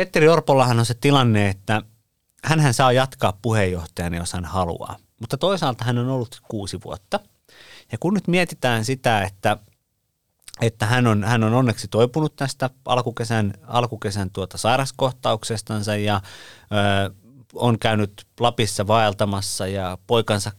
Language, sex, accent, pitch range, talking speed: Finnish, male, native, 95-120 Hz, 135 wpm